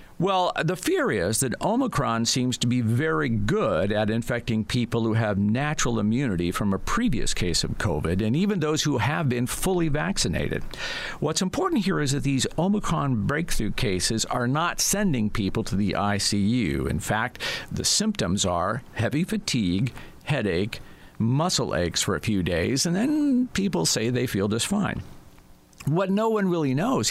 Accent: American